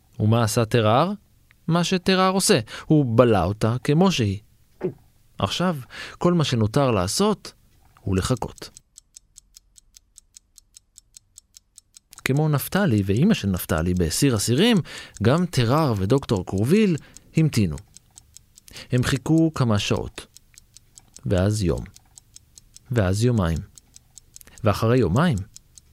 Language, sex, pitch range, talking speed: Hebrew, male, 100-155 Hz, 95 wpm